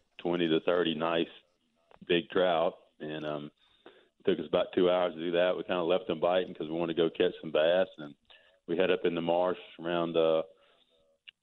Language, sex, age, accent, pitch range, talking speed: English, male, 40-59, American, 80-90 Hz, 215 wpm